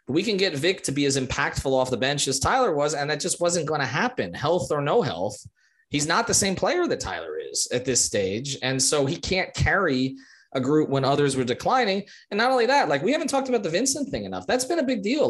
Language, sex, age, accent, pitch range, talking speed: English, male, 20-39, American, 130-210 Hz, 255 wpm